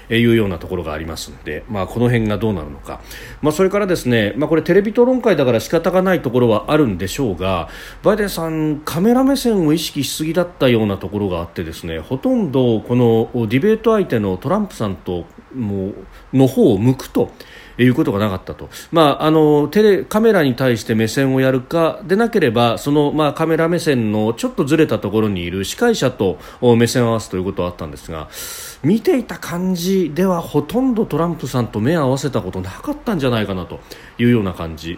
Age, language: 40-59, Japanese